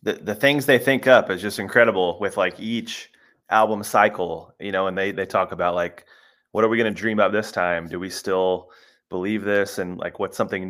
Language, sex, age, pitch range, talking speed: English, male, 30-49, 100-120 Hz, 225 wpm